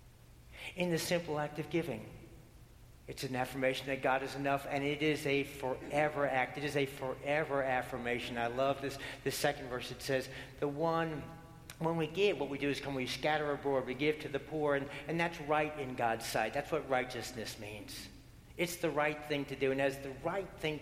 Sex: male